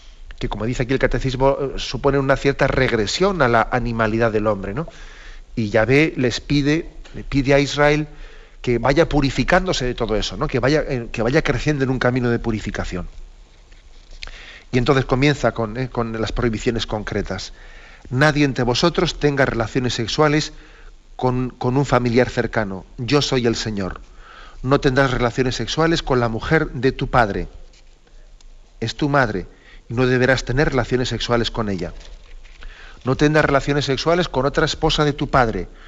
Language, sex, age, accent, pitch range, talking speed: Spanish, male, 40-59, Spanish, 115-140 Hz, 160 wpm